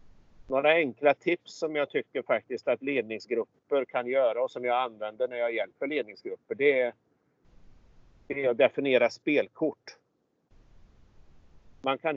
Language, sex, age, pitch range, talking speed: Swedish, male, 50-69, 115-140 Hz, 130 wpm